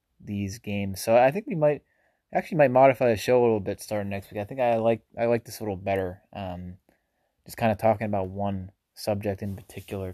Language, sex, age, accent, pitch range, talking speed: English, male, 20-39, American, 100-120 Hz, 225 wpm